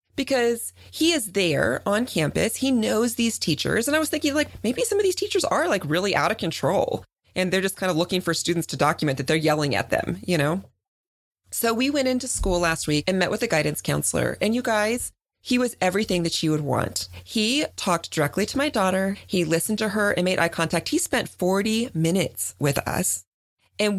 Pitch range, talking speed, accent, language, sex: 150-215 Hz, 220 wpm, American, English, female